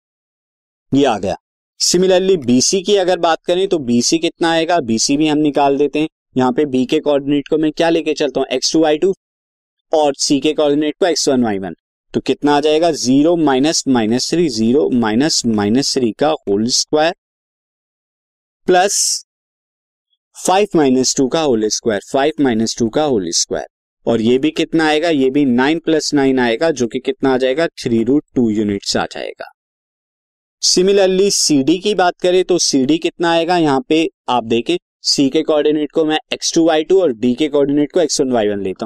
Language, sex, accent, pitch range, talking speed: Hindi, male, native, 130-175 Hz, 180 wpm